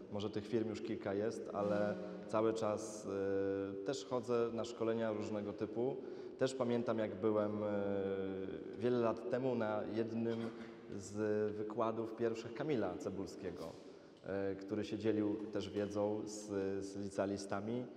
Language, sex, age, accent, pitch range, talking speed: Polish, male, 20-39, native, 100-115 Hz, 125 wpm